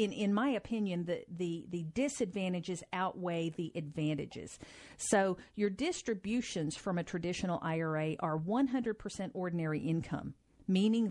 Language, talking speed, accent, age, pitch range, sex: English, 125 wpm, American, 50-69, 165-215 Hz, female